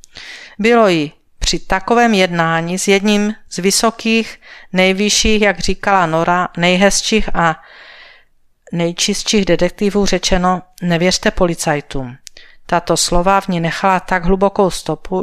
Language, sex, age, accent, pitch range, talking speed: Czech, female, 40-59, native, 165-195 Hz, 110 wpm